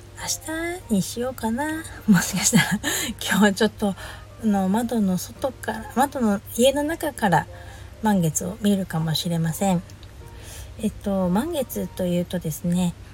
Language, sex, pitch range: Japanese, female, 165-230 Hz